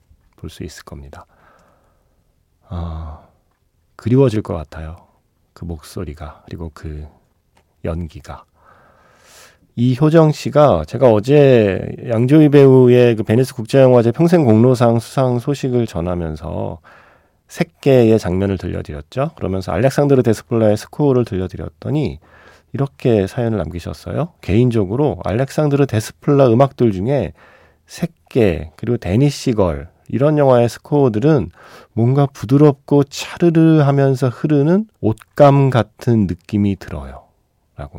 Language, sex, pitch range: Korean, male, 90-135 Hz